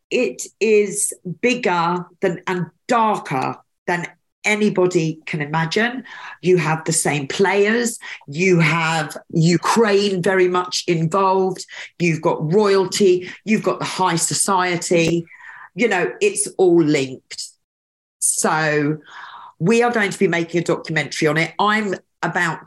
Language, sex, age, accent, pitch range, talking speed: English, female, 40-59, British, 165-200 Hz, 125 wpm